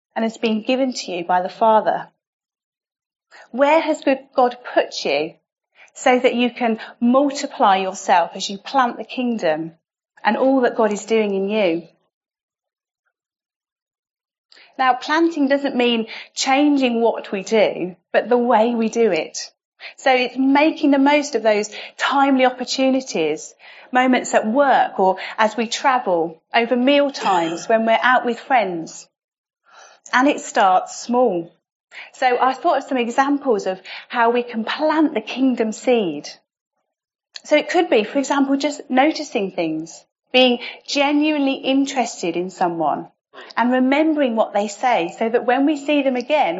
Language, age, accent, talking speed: English, 30-49, British, 150 wpm